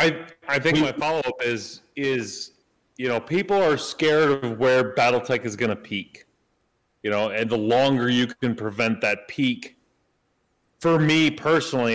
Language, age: English, 30-49